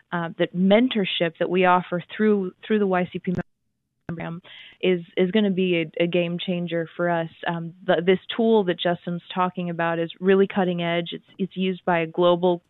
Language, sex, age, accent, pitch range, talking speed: English, female, 20-39, American, 170-195 Hz, 195 wpm